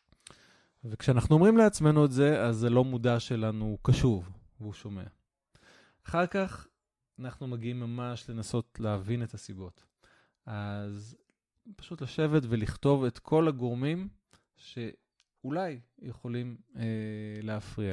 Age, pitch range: 20-39, 110-135 Hz